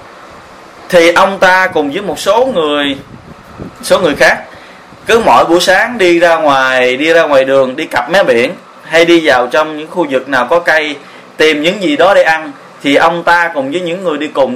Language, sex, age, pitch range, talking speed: Vietnamese, male, 20-39, 135-170 Hz, 210 wpm